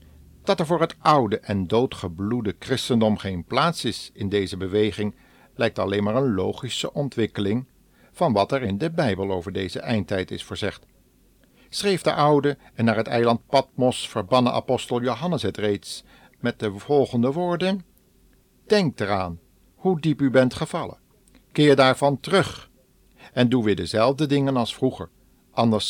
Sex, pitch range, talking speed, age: male, 100-135 Hz, 155 wpm, 50-69